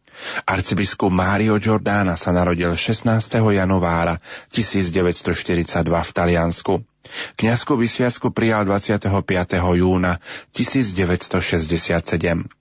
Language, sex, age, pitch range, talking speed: Slovak, male, 30-49, 90-110 Hz, 75 wpm